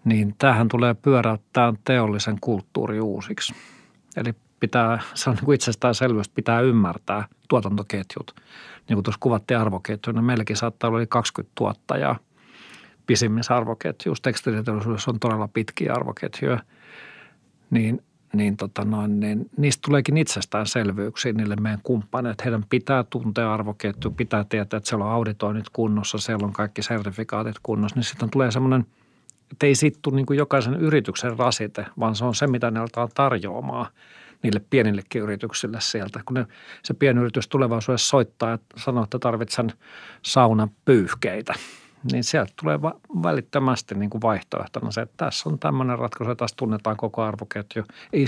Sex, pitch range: male, 110-130 Hz